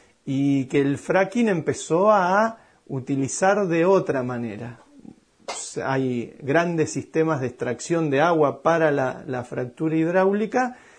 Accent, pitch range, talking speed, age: Argentinian, 130-180 Hz, 120 wpm, 40-59